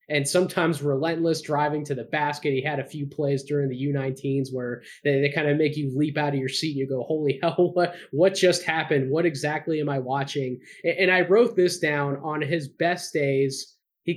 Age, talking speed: 20-39, 215 wpm